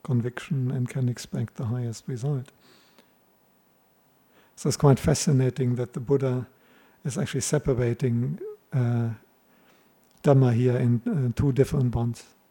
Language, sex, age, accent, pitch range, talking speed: English, male, 50-69, German, 120-135 Hz, 120 wpm